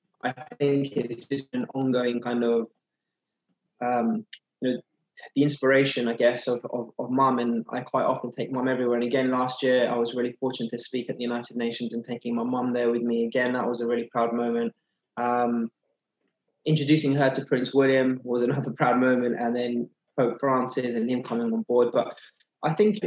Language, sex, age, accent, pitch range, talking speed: English, male, 20-39, British, 120-135 Hz, 200 wpm